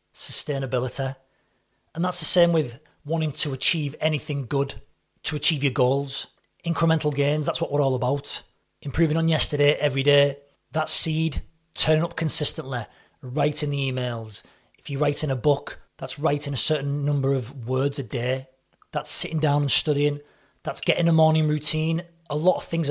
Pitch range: 135-160 Hz